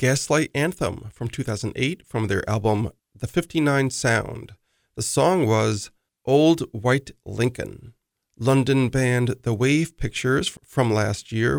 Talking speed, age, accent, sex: 125 wpm, 40-59, American, male